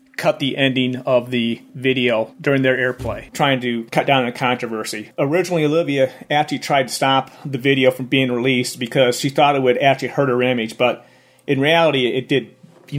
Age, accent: 40-59, American